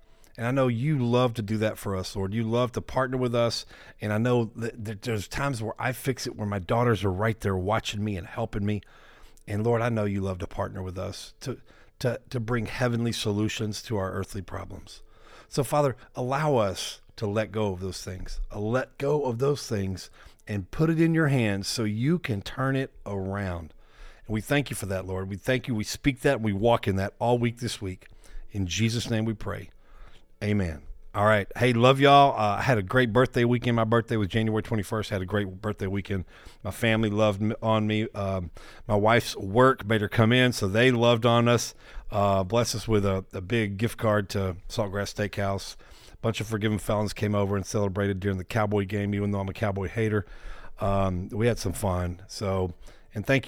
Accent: American